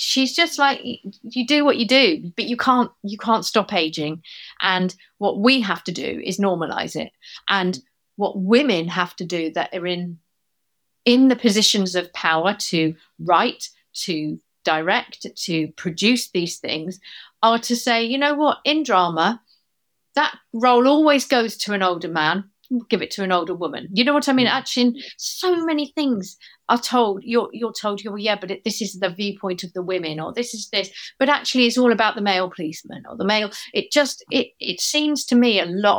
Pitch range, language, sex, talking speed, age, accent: 185-245 Hz, English, female, 195 wpm, 40-59, British